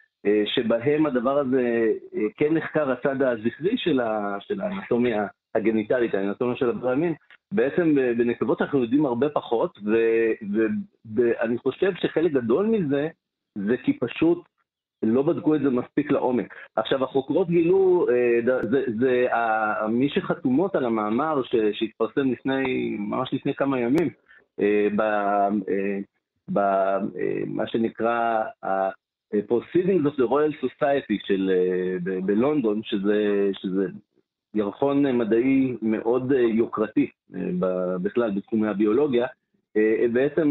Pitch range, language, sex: 110-140 Hz, Hebrew, male